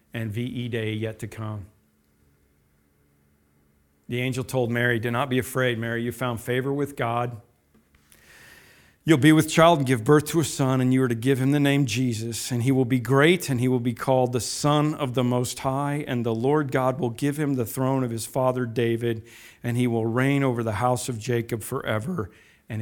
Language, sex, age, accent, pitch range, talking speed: English, male, 50-69, American, 105-135 Hz, 210 wpm